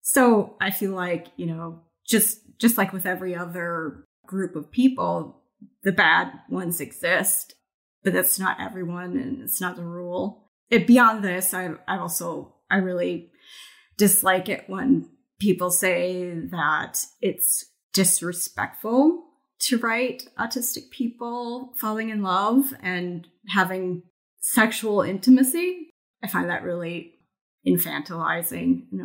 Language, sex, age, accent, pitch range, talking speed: English, female, 30-49, American, 175-225 Hz, 125 wpm